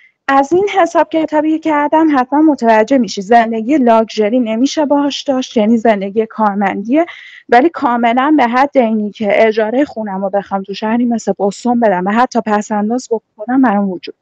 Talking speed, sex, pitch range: 160 wpm, female, 205-280 Hz